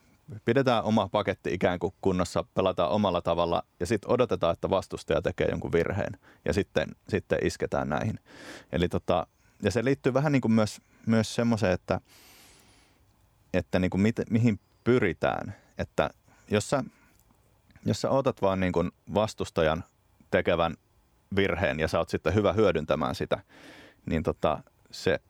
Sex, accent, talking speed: male, native, 145 wpm